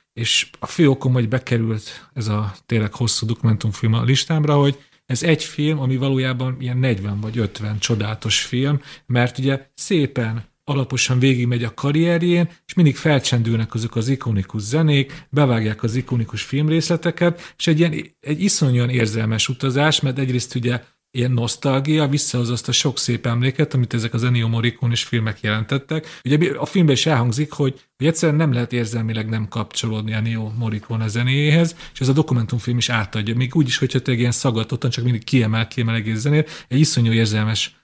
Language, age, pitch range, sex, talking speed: Hungarian, 40-59, 120-150 Hz, male, 175 wpm